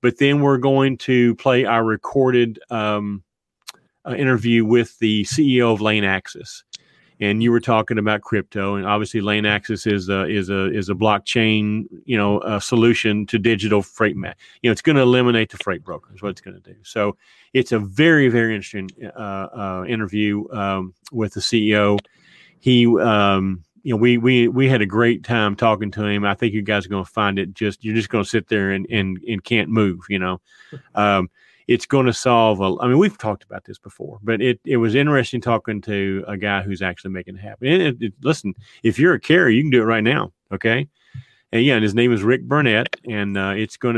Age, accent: 40-59, American